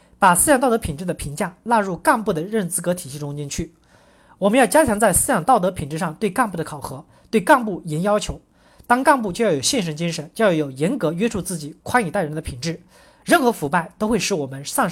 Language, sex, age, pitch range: Chinese, male, 40-59, 165-240 Hz